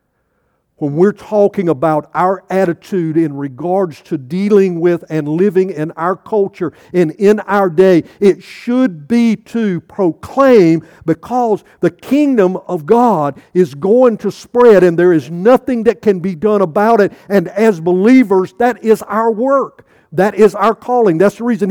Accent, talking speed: American, 160 wpm